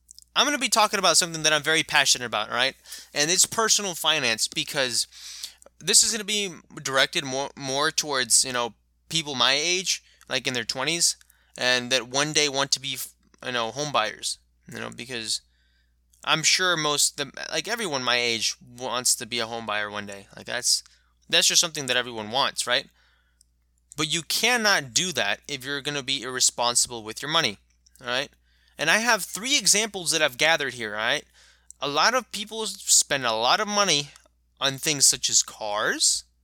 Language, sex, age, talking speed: English, male, 20-39, 190 wpm